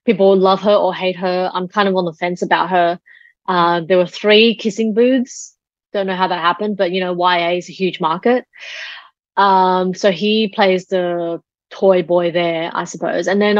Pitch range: 170-195 Hz